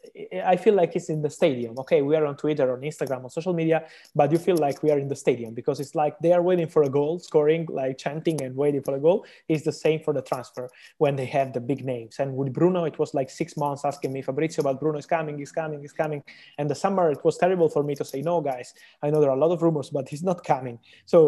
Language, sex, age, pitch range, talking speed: English, male, 20-39, 135-160 Hz, 280 wpm